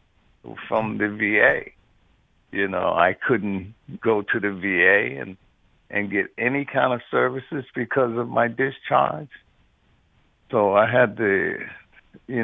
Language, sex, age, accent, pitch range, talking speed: English, male, 60-79, American, 105-130 Hz, 130 wpm